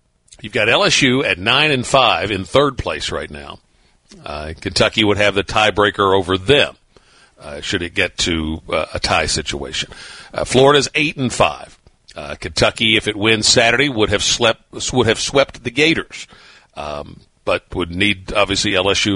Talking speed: 170 wpm